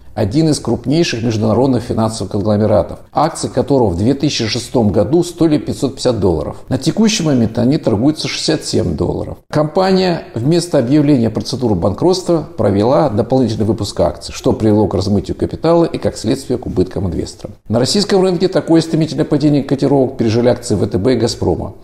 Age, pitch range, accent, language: 50-69, 110-150 Hz, native, Russian